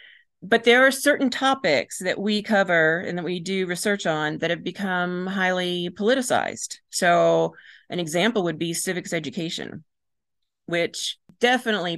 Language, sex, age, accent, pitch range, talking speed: English, female, 40-59, American, 160-195 Hz, 140 wpm